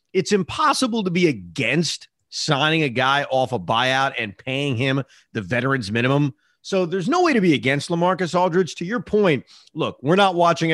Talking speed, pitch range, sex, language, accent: 185 wpm, 135-195 Hz, male, English, American